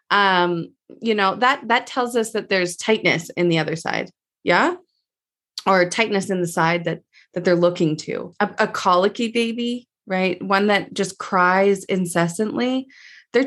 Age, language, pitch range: 20-39, English, 180-220 Hz